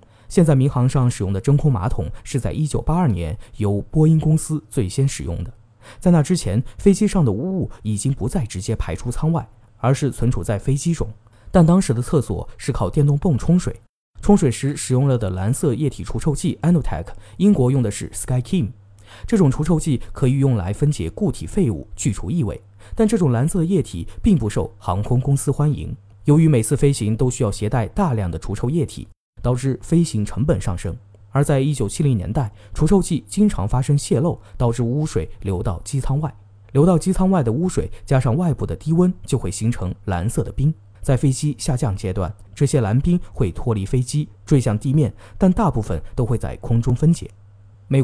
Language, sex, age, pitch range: Chinese, male, 20-39, 105-150 Hz